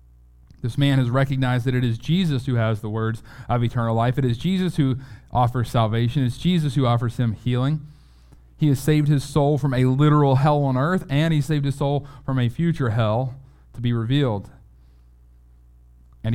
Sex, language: male, English